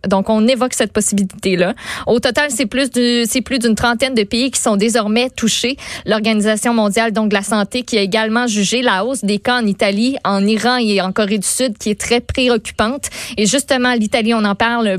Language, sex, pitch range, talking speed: French, female, 200-240 Hz, 210 wpm